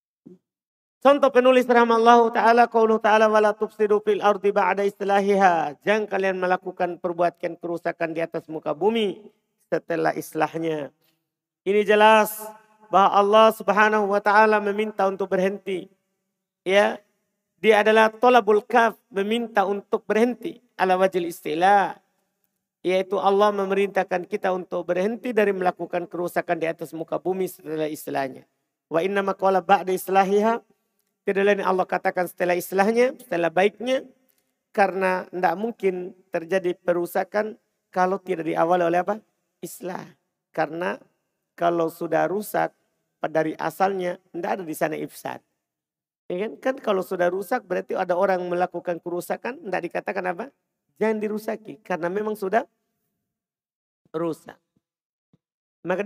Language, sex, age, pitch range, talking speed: Indonesian, male, 50-69, 180-215 Hz, 120 wpm